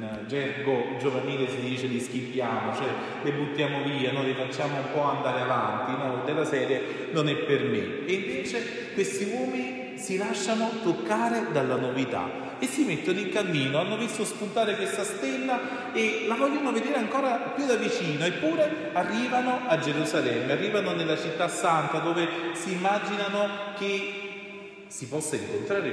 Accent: native